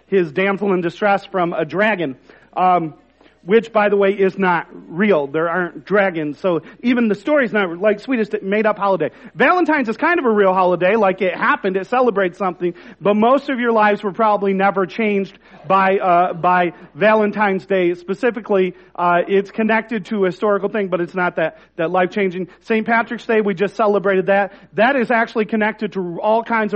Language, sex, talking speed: English, male, 190 wpm